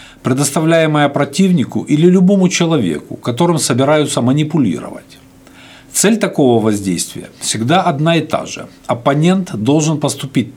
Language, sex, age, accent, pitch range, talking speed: Russian, male, 50-69, native, 130-180 Hz, 110 wpm